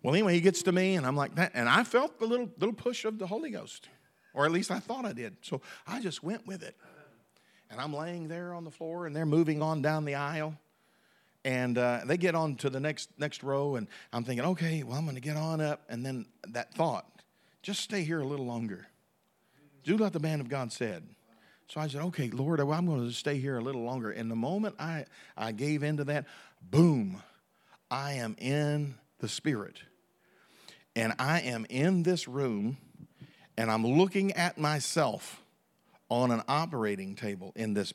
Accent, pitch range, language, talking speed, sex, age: American, 125-180 Hz, English, 205 wpm, male, 50-69